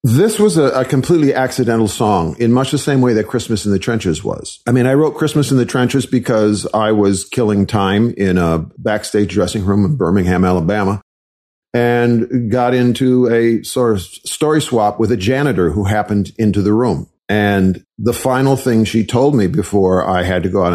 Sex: male